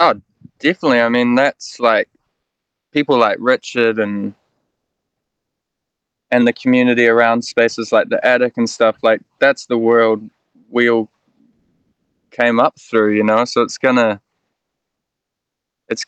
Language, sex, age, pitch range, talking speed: English, male, 20-39, 110-125 Hz, 135 wpm